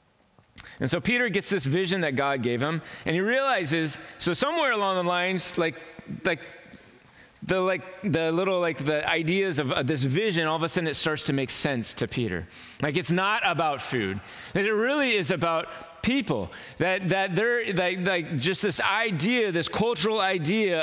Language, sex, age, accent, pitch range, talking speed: English, male, 30-49, American, 135-195 Hz, 185 wpm